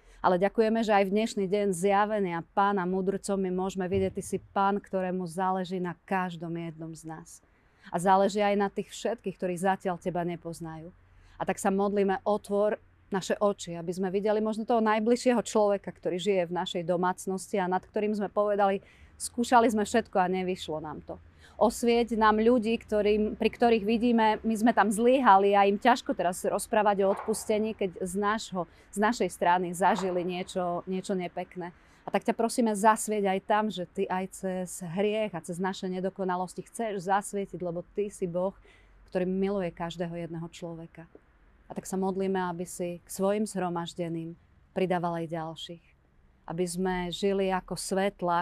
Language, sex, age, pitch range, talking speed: Slovak, female, 30-49, 175-200 Hz, 170 wpm